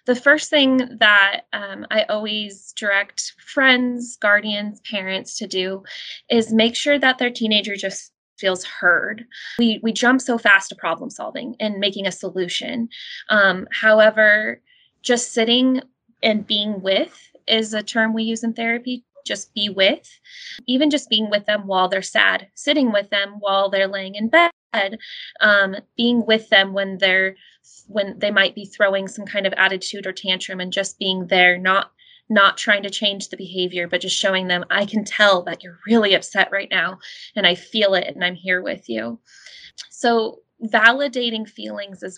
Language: English